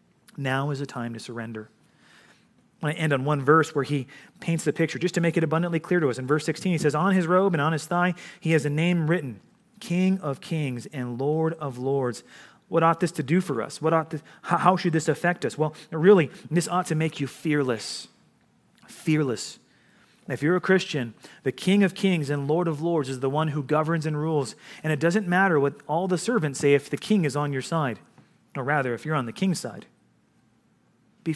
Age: 30-49